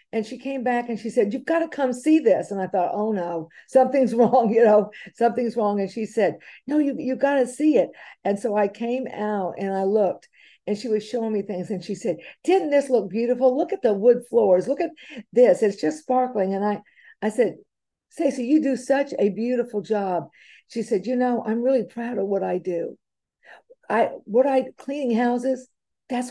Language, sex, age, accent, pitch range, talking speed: English, female, 50-69, American, 205-265 Hz, 215 wpm